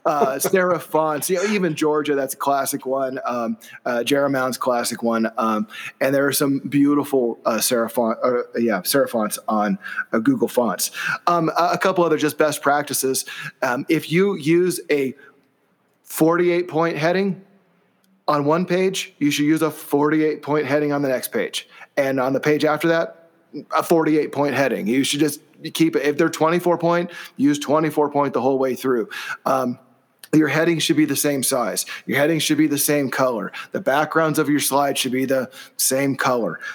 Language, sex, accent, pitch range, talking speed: English, male, American, 130-160 Hz, 185 wpm